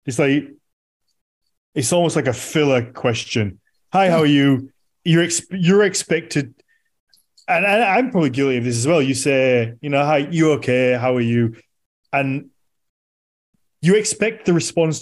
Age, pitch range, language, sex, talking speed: 20-39, 120-165 Hz, English, male, 160 wpm